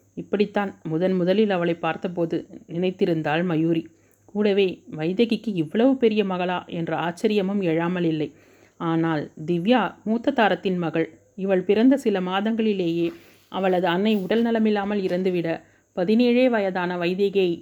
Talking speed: 110 wpm